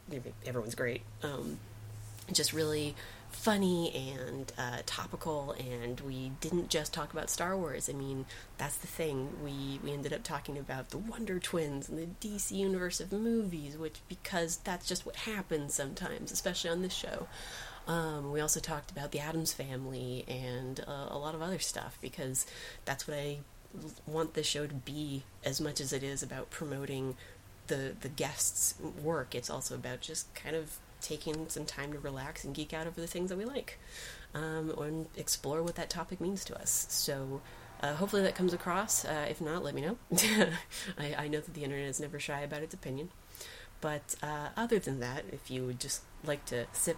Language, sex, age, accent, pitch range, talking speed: English, female, 30-49, American, 135-165 Hz, 190 wpm